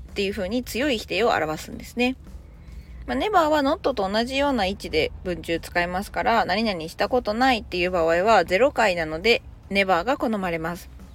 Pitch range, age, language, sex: 175-265 Hz, 20-39, Japanese, female